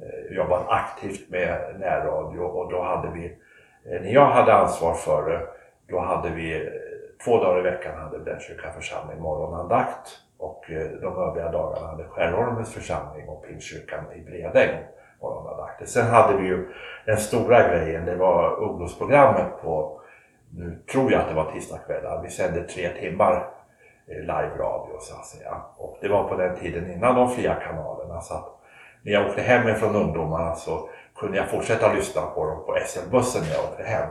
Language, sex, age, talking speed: Swedish, male, 60-79, 165 wpm